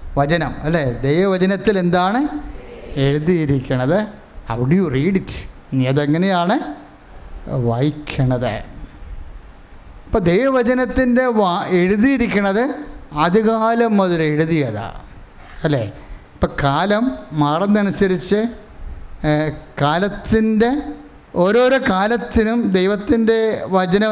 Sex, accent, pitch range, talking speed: male, Indian, 155-225 Hz, 95 wpm